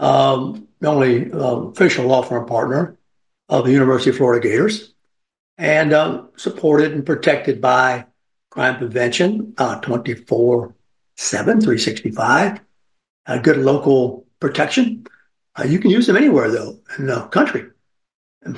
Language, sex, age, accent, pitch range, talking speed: English, male, 60-79, American, 125-145 Hz, 140 wpm